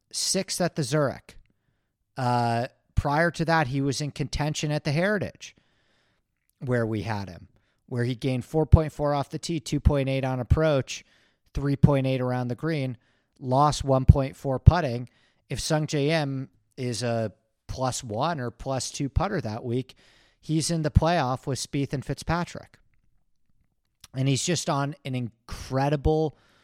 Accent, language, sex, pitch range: American, English, male, 115-145 Hz